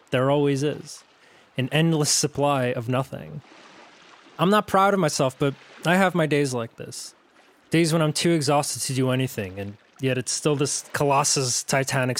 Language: English